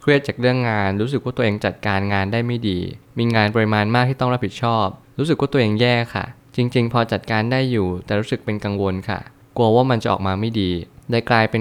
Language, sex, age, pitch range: Thai, male, 20-39, 100-125 Hz